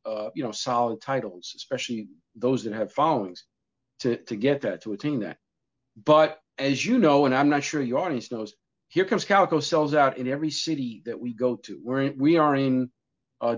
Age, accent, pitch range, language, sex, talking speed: 50-69, American, 130-165 Hz, English, male, 205 wpm